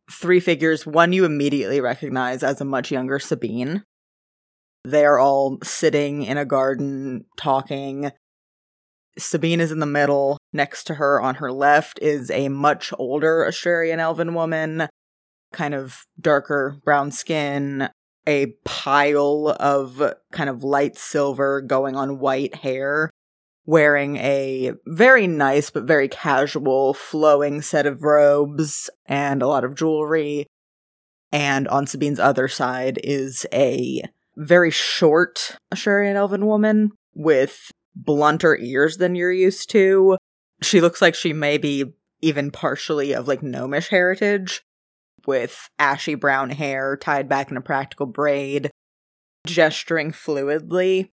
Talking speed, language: 130 wpm, English